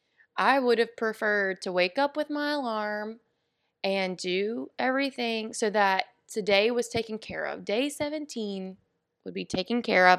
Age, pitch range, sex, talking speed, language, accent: 20-39, 185-225 Hz, female, 160 wpm, English, American